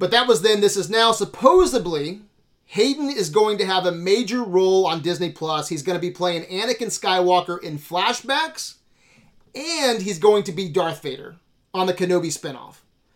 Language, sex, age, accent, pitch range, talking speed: English, male, 30-49, American, 165-225 Hz, 180 wpm